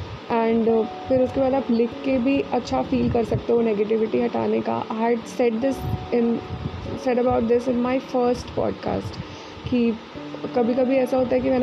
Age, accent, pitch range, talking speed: 20-39, native, 210-250 Hz, 185 wpm